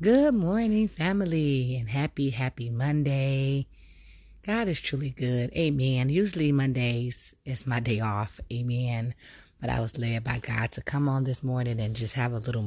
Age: 20-39